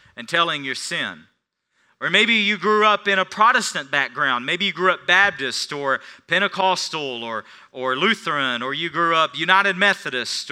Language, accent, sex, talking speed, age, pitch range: English, American, male, 165 wpm, 40-59, 150-230 Hz